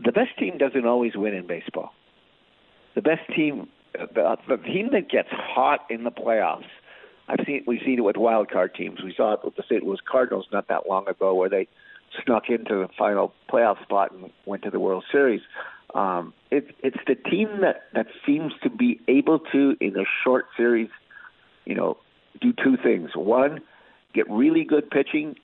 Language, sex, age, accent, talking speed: English, male, 60-79, American, 190 wpm